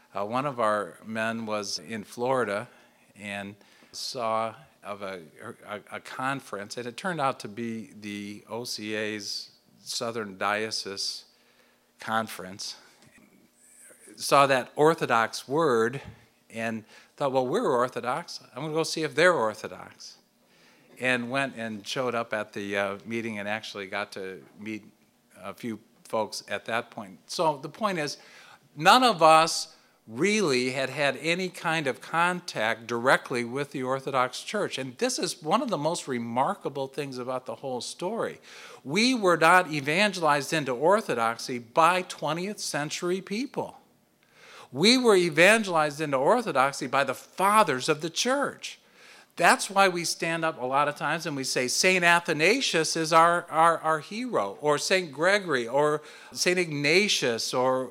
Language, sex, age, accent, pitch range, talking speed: English, male, 50-69, American, 115-165 Hz, 145 wpm